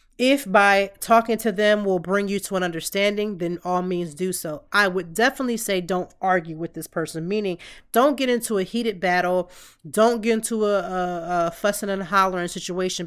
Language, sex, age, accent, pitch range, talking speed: English, female, 30-49, American, 170-200 Hz, 195 wpm